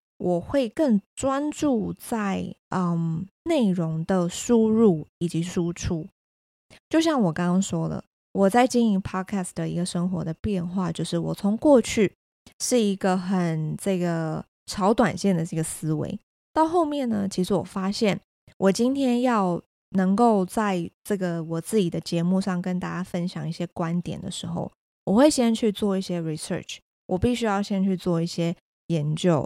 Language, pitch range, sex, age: Chinese, 170-210 Hz, female, 20-39